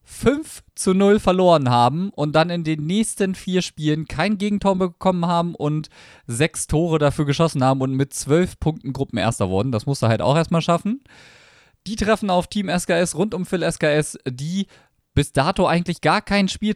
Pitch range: 150-195 Hz